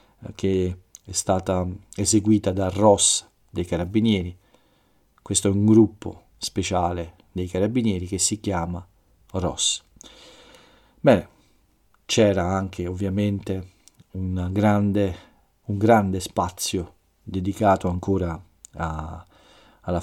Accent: native